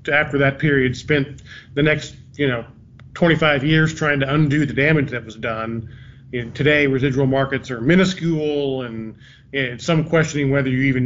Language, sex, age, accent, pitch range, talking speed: English, male, 40-59, American, 125-150 Hz, 175 wpm